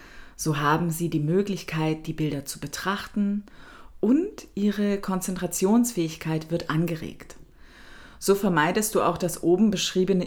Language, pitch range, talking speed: German, 150-200 Hz, 125 wpm